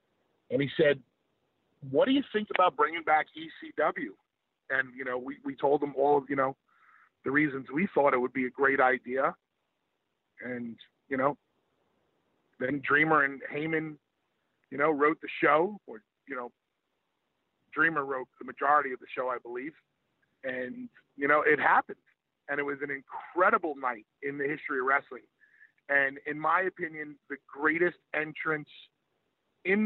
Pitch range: 140-185 Hz